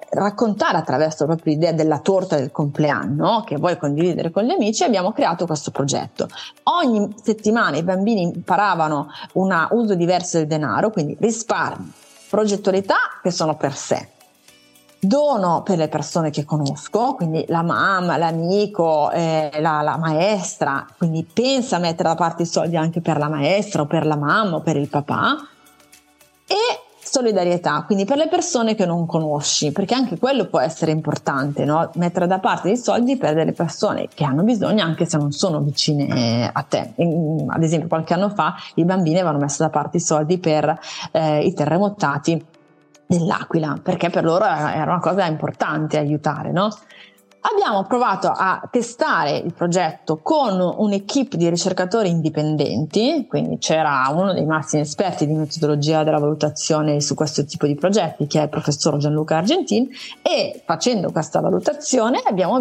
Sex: female